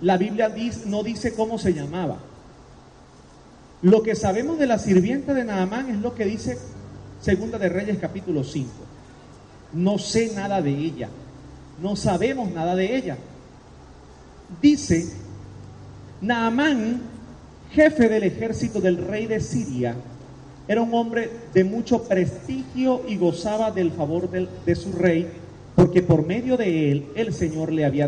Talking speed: 140 wpm